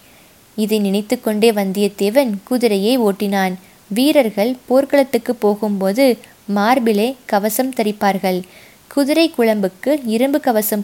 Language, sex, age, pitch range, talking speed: Tamil, female, 20-39, 205-250 Hz, 95 wpm